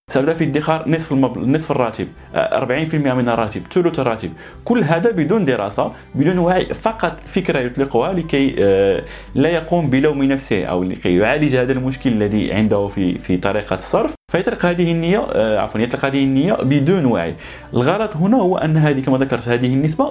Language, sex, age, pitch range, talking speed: Arabic, male, 20-39, 115-170 Hz, 165 wpm